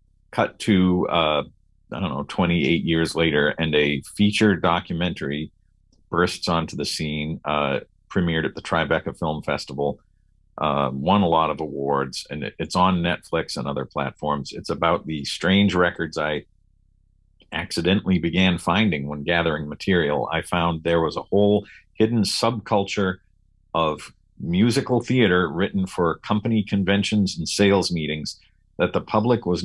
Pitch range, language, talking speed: 80-100 Hz, English, 145 wpm